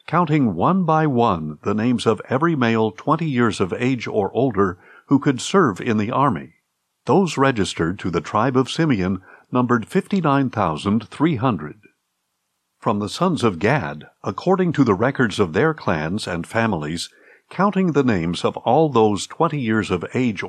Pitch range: 105-150 Hz